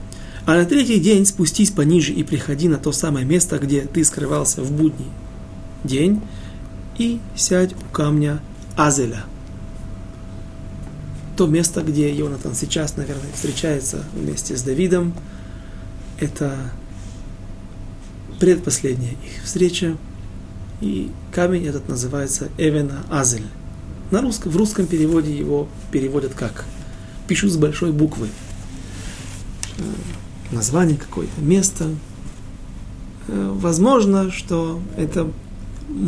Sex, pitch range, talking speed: male, 100-165 Hz, 95 wpm